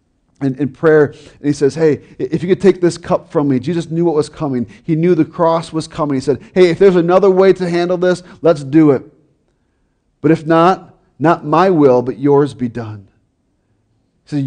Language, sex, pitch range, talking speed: English, male, 130-165 Hz, 215 wpm